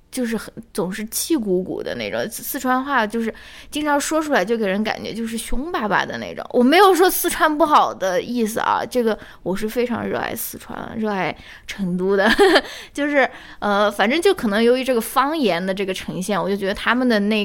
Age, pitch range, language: 20-39, 195-250 Hz, Chinese